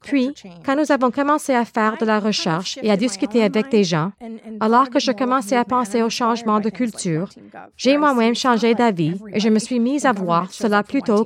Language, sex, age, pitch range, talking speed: French, female, 30-49, 205-255 Hz, 210 wpm